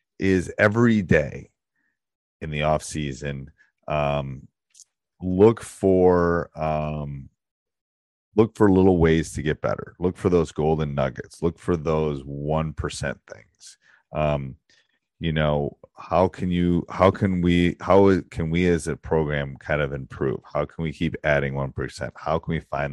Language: English